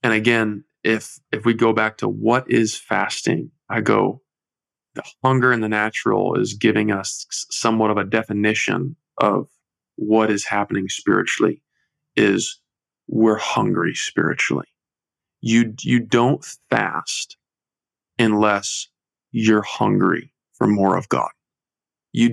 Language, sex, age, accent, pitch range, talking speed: English, male, 20-39, American, 105-120 Hz, 125 wpm